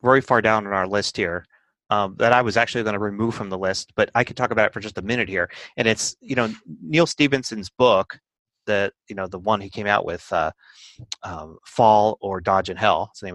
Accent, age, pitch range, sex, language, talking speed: American, 30-49, 100-125 Hz, male, English, 245 wpm